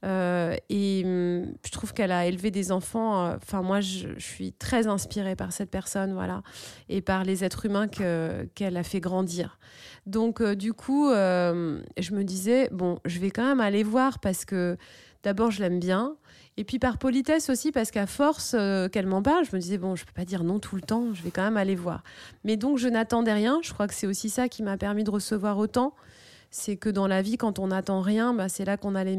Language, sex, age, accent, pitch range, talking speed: French, female, 20-39, French, 185-225 Hz, 230 wpm